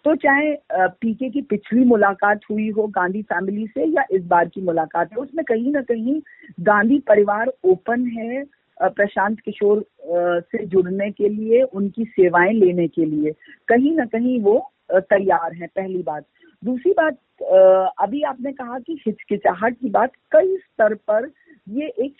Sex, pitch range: female, 185-250 Hz